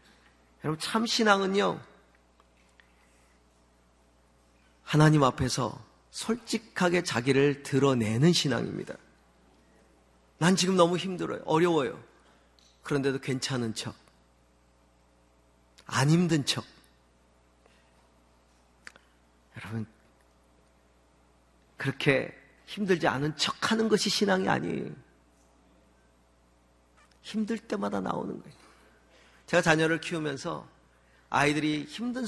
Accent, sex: native, male